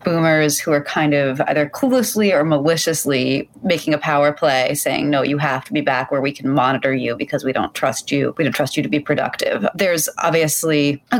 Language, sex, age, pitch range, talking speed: English, female, 30-49, 140-170 Hz, 215 wpm